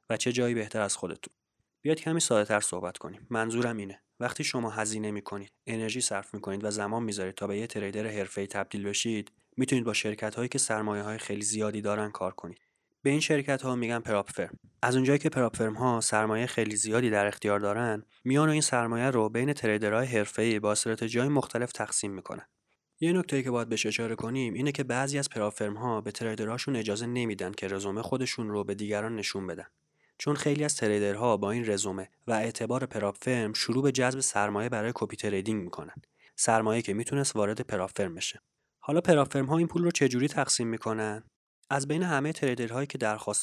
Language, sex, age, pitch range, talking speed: Persian, male, 30-49, 105-130 Hz, 185 wpm